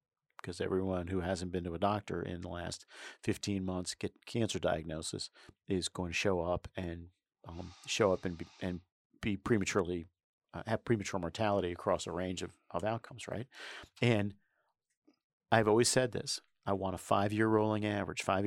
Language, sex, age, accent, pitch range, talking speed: English, male, 40-59, American, 95-115 Hz, 175 wpm